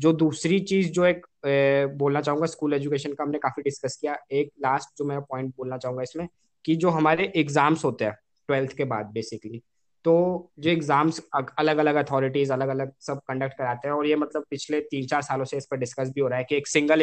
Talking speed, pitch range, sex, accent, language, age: 220 wpm, 135-160 Hz, male, native, Hindi, 20-39